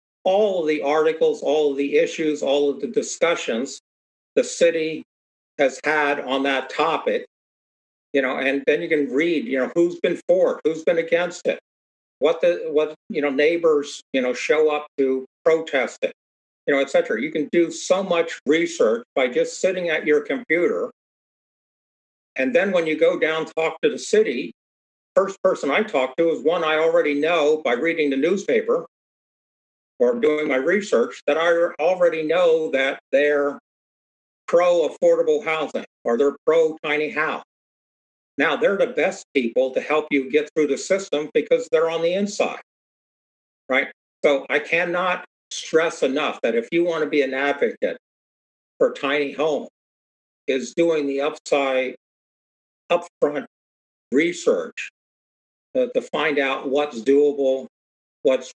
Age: 50-69